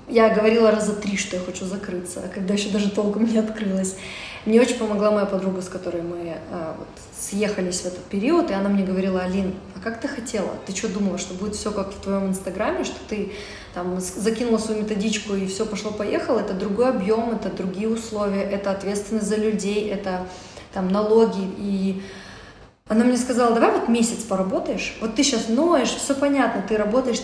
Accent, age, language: native, 20-39, Russian